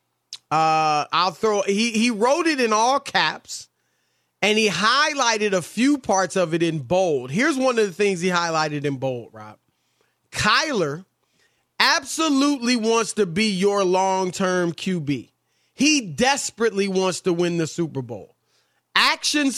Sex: male